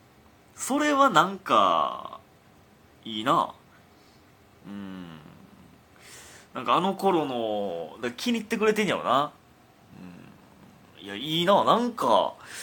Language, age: Japanese, 30-49